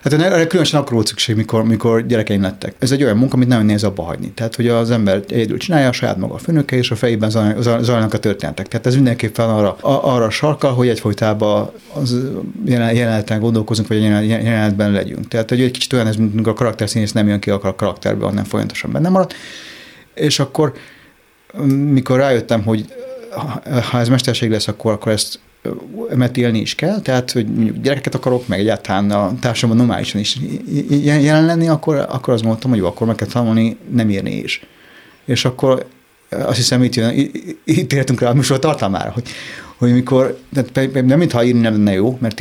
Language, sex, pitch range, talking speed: Hungarian, male, 110-130 Hz, 185 wpm